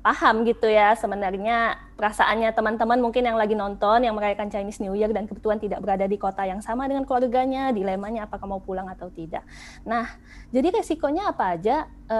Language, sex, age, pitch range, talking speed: Indonesian, female, 20-39, 210-265 Hz, 180 wpm